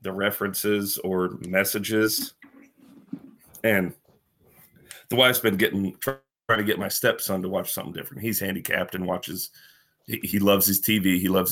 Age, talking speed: 40-59, 145 wpm